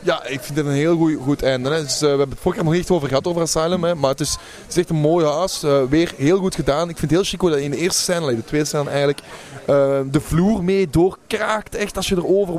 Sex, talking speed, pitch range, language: male, 295 wpm, 155-185 Hz, Dutch